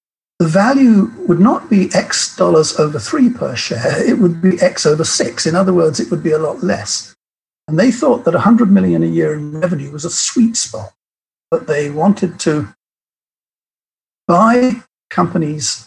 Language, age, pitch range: English, 50-69, 150-200 Hz